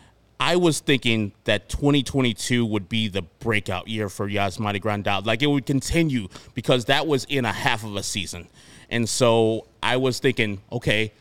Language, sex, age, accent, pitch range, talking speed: English, male, 30-49, American, 100-125 Hz, 170 wpm